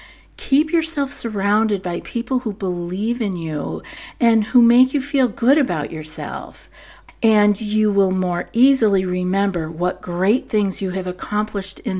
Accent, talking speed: American, 150 wpm